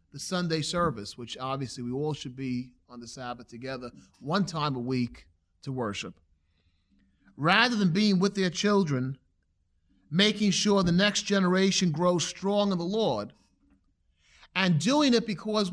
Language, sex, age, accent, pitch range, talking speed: English, male, 30-49, American, 120-195 Hz, 145 wpm